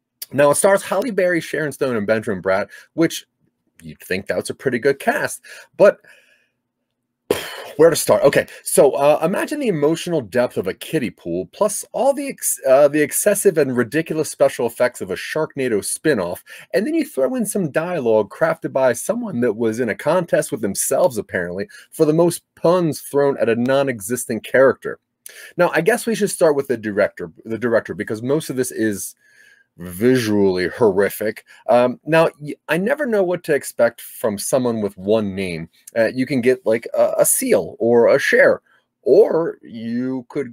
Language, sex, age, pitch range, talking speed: English, male, 30-49, 125-200 Hz, 180 wpm